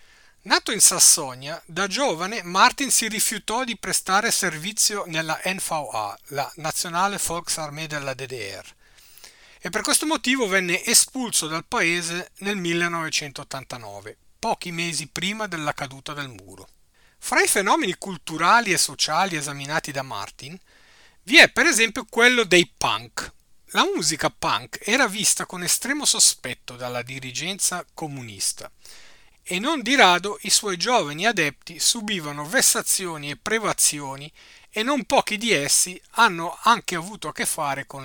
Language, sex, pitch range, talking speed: Italian, male, 150-220 Hz, 135 wpm